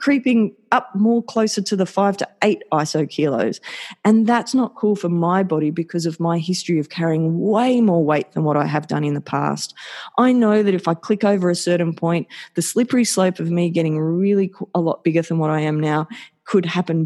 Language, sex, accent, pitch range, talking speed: English, female, Australian, 160-205 Hz, 220 wpm